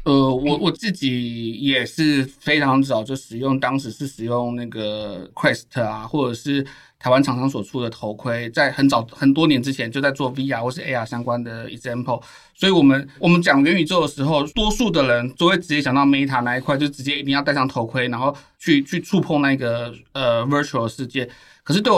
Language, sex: Chinese, male